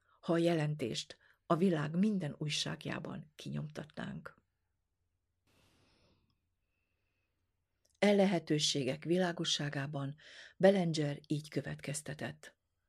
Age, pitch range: 50-69, 135-175 Hz